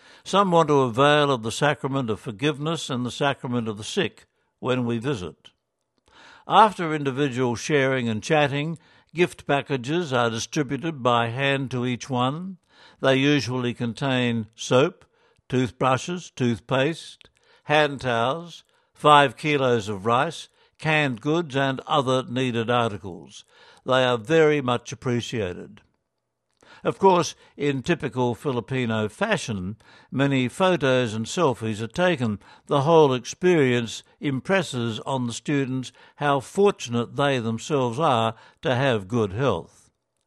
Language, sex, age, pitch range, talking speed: English, male, 60-79, 120-150 Hz, 125 wpm